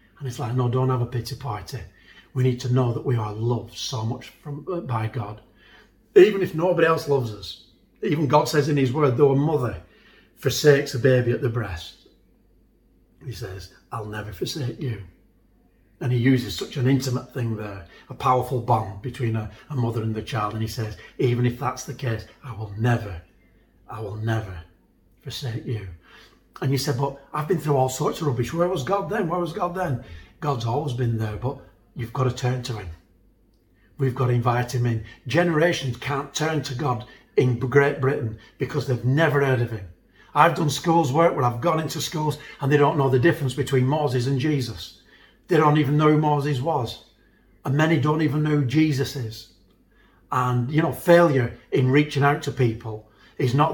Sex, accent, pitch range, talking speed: male, British, 115-145 Hz, 200 wpm